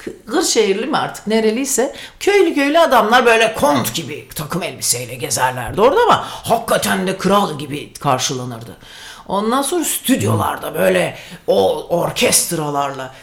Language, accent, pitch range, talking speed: Turkish, native, 215-355 Hz, 125 wpm